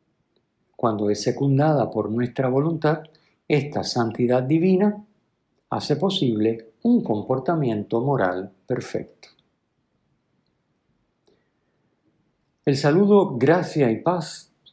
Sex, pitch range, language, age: male, 120-170 Hz, Spanish, 50-69